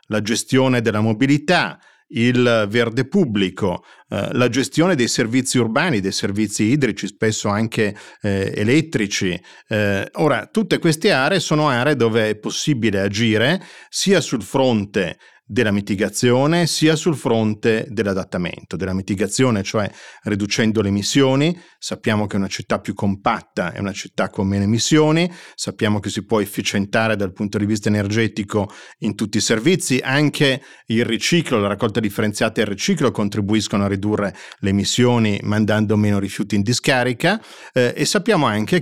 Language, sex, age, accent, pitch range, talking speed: Italian, male, 40-59, native, 105-130 Hz, 145 wpm